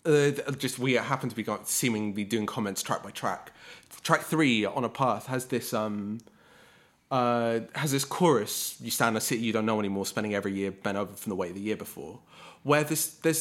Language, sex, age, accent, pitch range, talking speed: English, male, 20-39, British, 115-150 Hz, 215 wpm